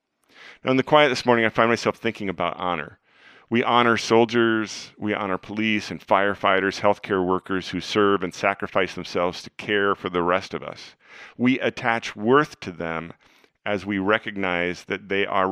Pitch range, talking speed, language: 95-115 Hz, 180 wpm, English